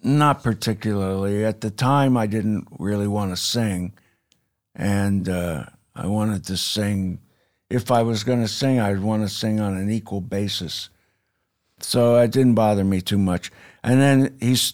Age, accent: 60-79, American